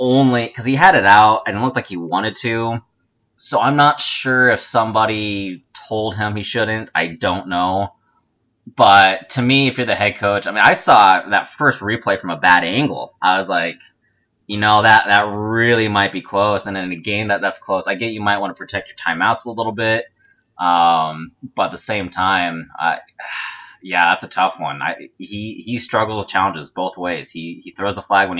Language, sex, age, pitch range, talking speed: English, male, 20-39, 85-115 Hz, 215 wpm